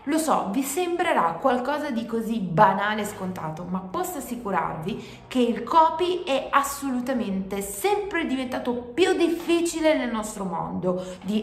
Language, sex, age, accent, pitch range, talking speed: Italian, female, 30-49, native, 200-280 Hz, 135 wpm